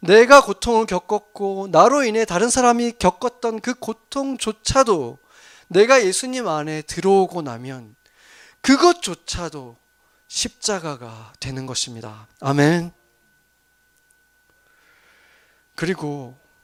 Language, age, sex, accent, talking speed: English, 40-59, male, Korean, 75 wpm